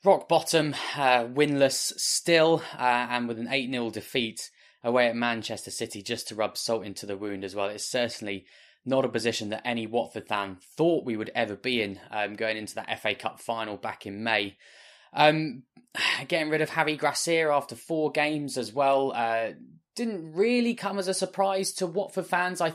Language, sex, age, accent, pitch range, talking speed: English, male, 20-39, British, 110-135 Hz, 185 wpm